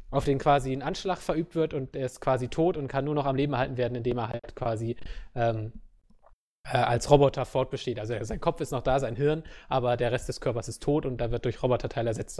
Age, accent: 20-39, German